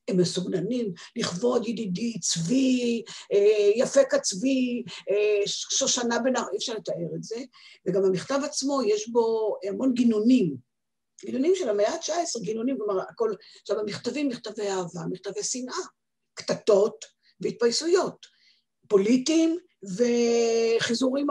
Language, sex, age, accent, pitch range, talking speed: Hebrew, female, 50-69, native, 185-255 Hz, 115 wpm